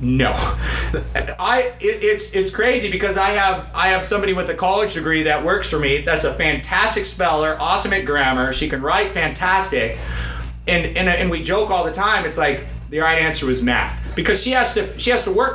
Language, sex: English, male